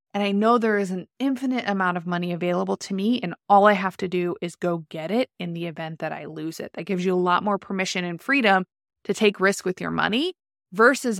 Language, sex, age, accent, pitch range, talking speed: English, female, 20-39, American, 185-255 Hz, 245 wpm